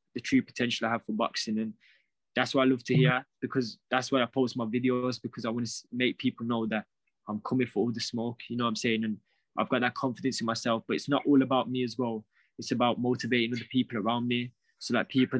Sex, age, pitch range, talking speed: male, 20-39, 115-130 Hz, 255 wpm